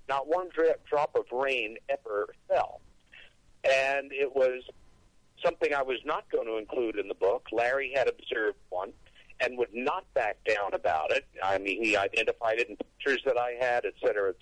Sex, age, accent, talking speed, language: male, 50-69, American, 185 wpm, English